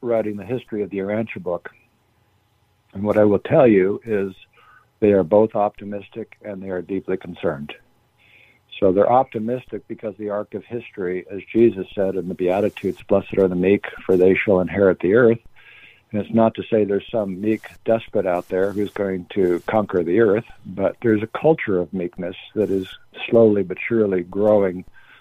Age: 60-79